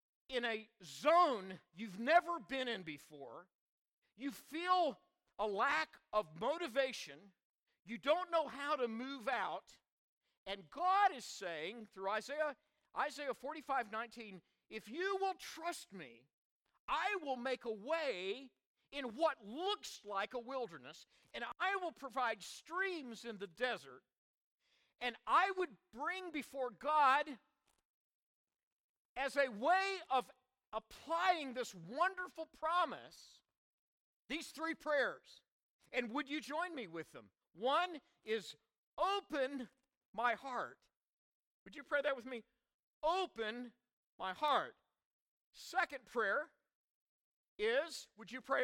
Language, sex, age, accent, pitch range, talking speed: English, male, 50-69, American, 230-325 Hz, 120 wpm